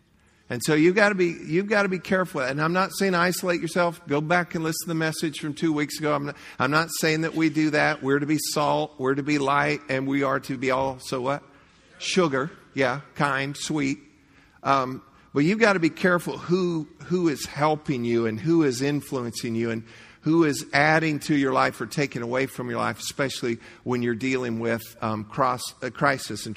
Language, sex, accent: English, male, American